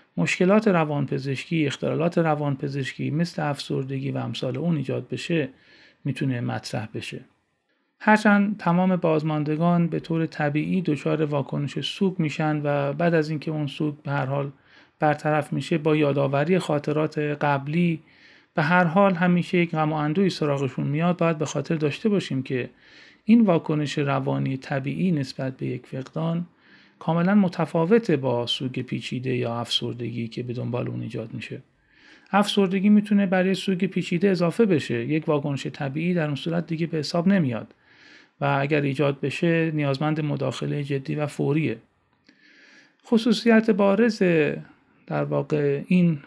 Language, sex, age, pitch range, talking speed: Persian, male, 40-59, 140-180 Hz, 135 wpm